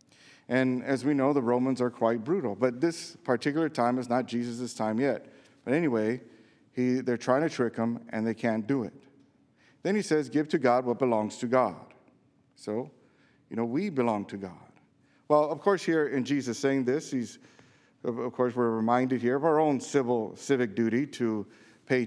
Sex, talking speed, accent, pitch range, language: male, 190 wpm, American, 110-130 Hz, English